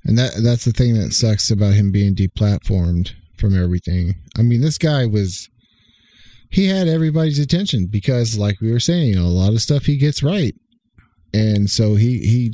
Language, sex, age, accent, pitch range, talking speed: English, male, 40-59, American, 95-120 Hz, 170 wpm